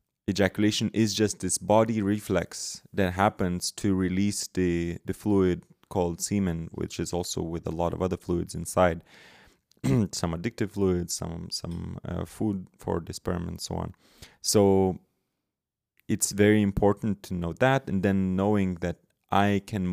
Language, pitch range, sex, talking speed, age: English, 85-100 Hz, male, 155 wpm, 30-49